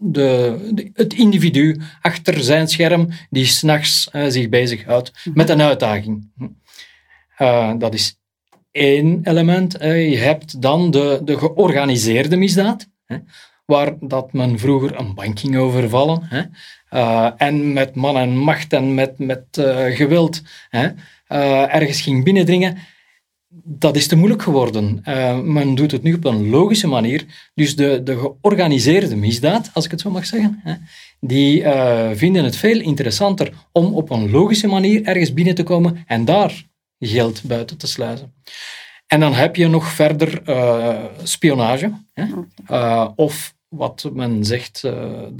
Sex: male